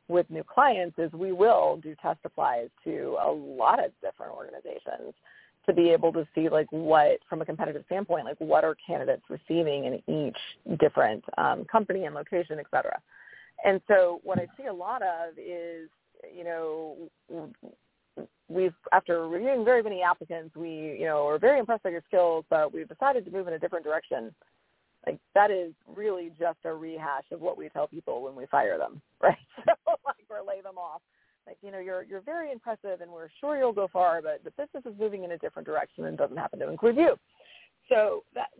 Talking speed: 195 wpm